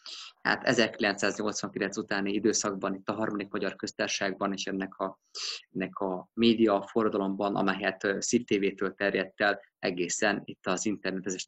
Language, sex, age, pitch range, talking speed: Hungarian, male, 20-39, 100-115 Hz, 125 wpm